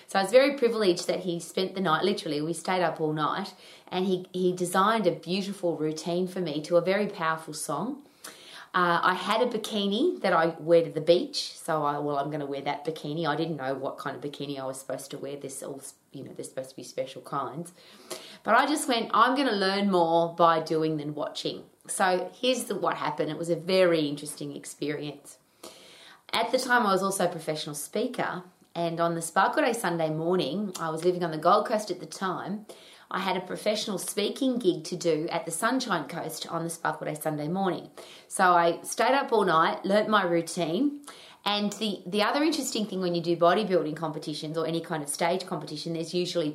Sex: female